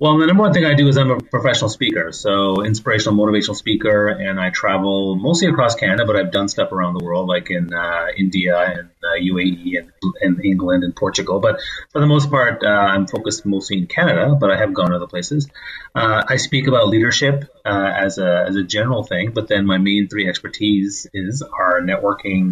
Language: English